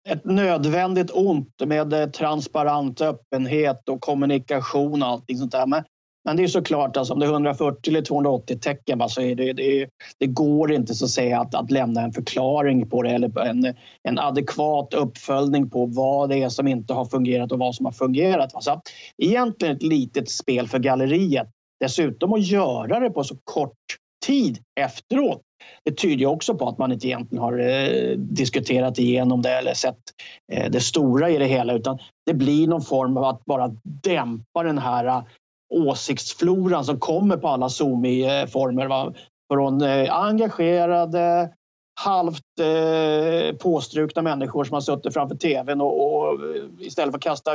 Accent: Swedish